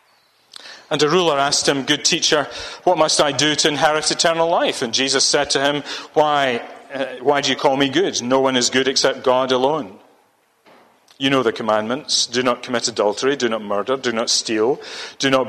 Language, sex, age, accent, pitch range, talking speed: English, male, 40-59, British, 125-150 Hz, 195 wpm